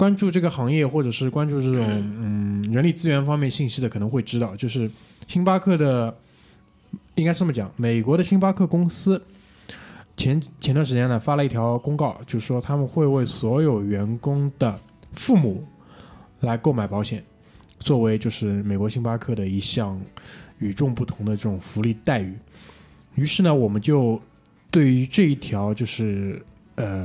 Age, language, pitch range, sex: 20-39, Chinese, 110-150 Hz, male